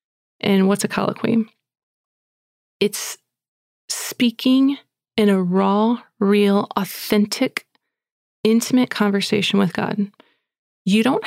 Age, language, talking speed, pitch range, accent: 30-49, English, 90 wpm, 195-225 Hz, American